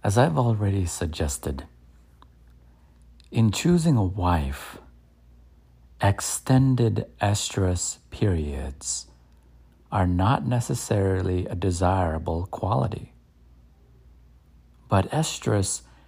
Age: 50-69